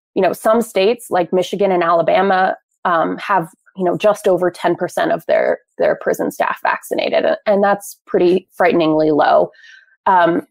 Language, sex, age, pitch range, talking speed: English, female, 20-39, 180-230 Hz, 160 wpm